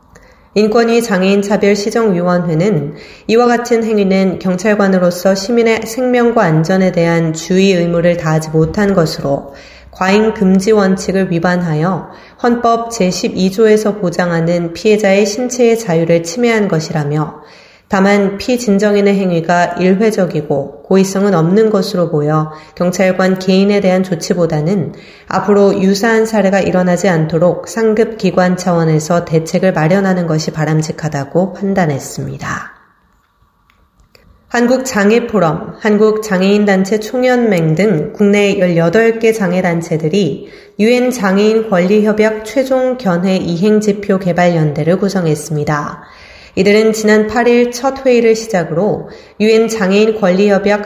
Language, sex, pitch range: Korean, female, 175-215 Hz